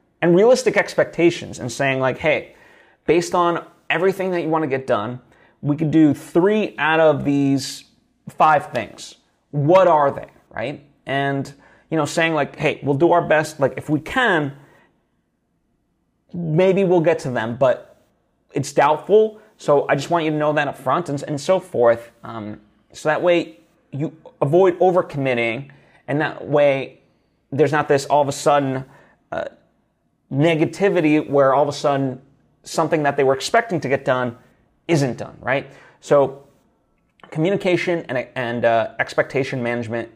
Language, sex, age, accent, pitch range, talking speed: English, male, 30-49, American, 130-165 Hz, 160 wpm